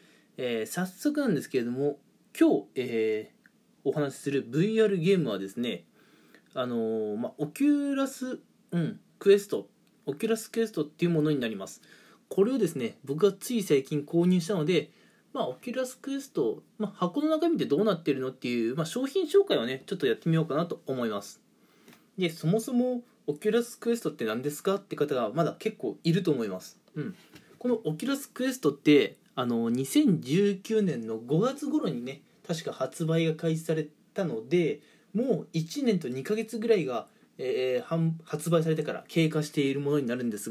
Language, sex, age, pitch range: Japanese, male, 20-39, 150-225 Hz